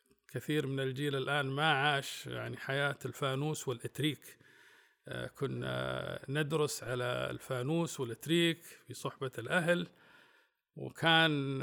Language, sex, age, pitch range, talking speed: Arabic, male, 50-69, 110-150 Hz, 100 wpm